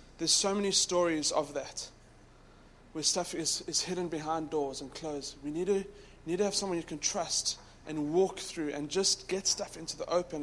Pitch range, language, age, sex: 105-170 Hz, English, 20-39, male